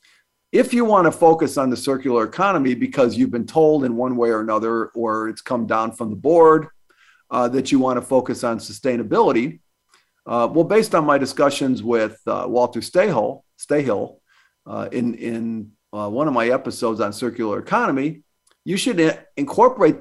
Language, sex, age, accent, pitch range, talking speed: English, male, 50-69, American, 115-185 Hz, 170 wpm